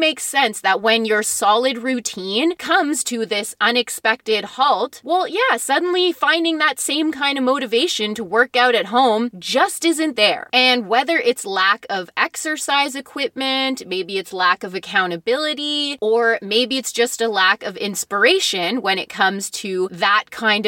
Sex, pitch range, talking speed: female, 210-280 Hz, 160 wpm